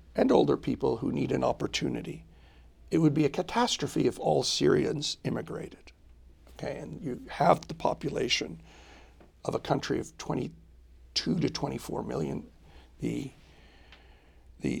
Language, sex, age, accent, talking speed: English, male, 50-69, American, 130 wpm